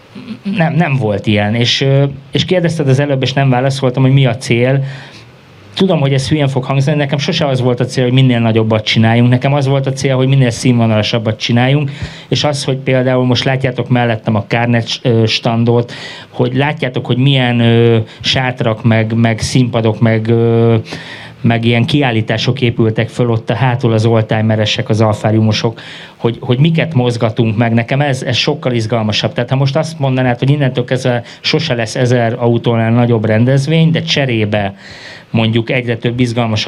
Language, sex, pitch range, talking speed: English, male, 115-135 Hz, 165 wpm